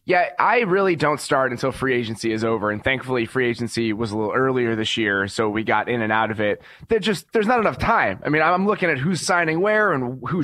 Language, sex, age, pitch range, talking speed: English, male, 20-39, 130-170 Hz, 245 wpm